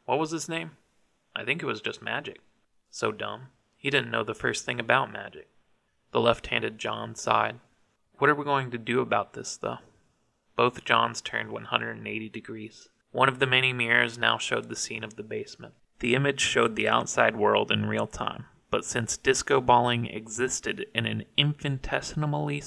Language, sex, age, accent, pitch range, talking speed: English, male, 30-49, American, 110-130 Hz, 175 wpm